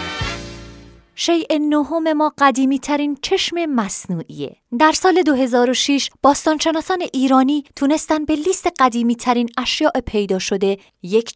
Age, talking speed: 30-49, 110 wpm